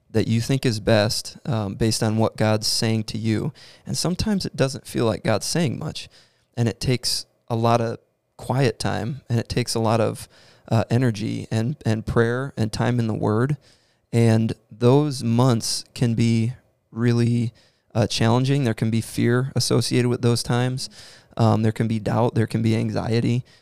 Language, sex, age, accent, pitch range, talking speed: English, male, 20-39, American, 110-125 Hz, 180 wpm